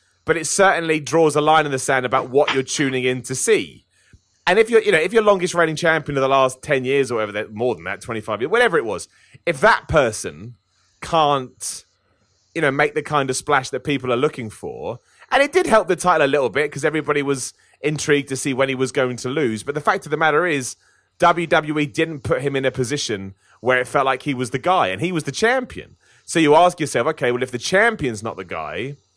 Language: English